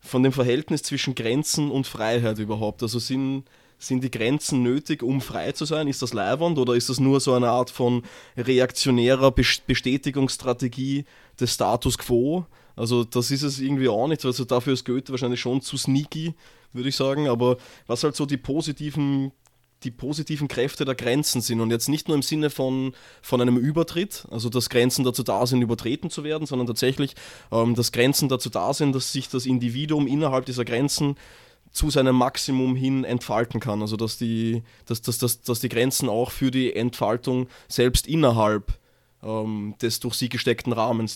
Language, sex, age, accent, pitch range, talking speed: German, male, 20-39, Austrian, 120-140 Hz, 180 wpm